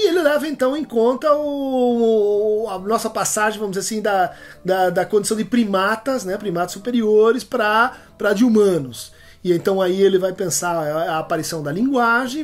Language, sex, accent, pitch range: Portuguese, male, Brazilian, 180-235 Hz